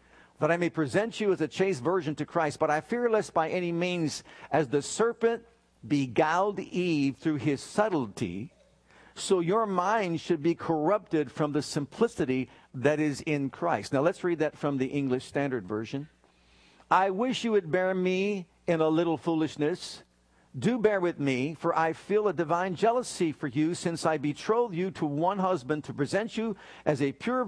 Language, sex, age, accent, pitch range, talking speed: English, male, 50-69, American, 140-190 Hz, 180 wpm